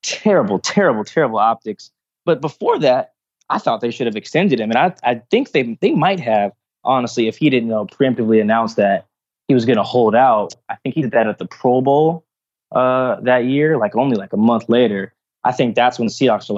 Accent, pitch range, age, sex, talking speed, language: American, 110-135 Hz, 20-39, male, 220 wpm, English